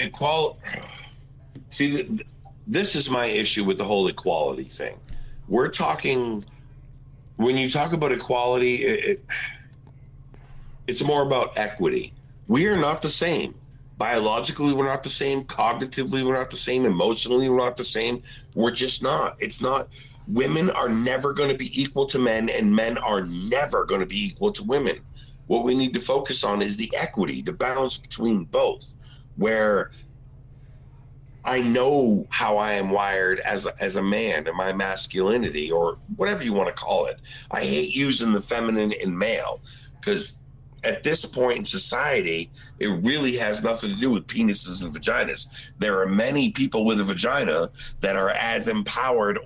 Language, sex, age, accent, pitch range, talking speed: English, male, 50-69, American, 115-140 Hz, 160 wpm